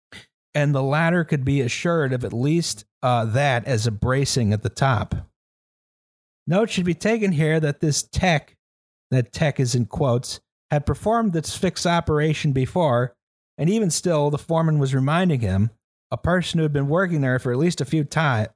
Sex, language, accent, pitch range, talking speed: male, English, American, 125-165 Hz, 185 wpm